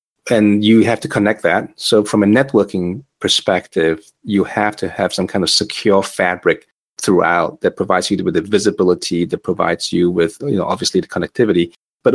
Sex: male